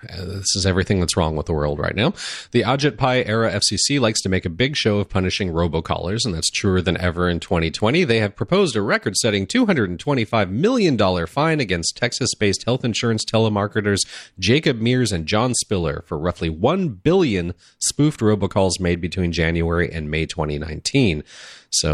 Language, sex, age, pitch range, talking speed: English, male, 30-49, 90-120 Hz, 180 wpm